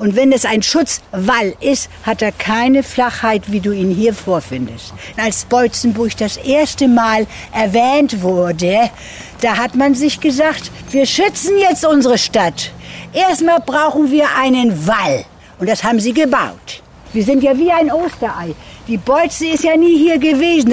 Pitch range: 215-315 Hz